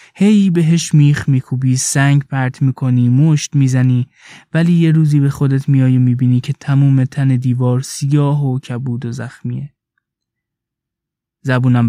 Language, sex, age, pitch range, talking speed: Persian, male, 20-39, 125-150 Hz, 140 wpm